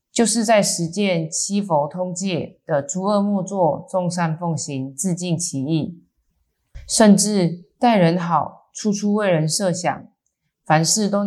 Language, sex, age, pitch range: Chinese, female, 20-39, 160-200 Hz